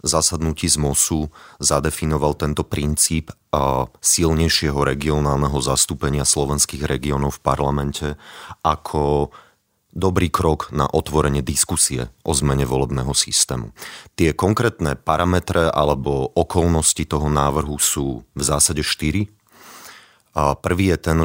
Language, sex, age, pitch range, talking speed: Slovak, male, 30-49, 70-80 Hz, 105 wpm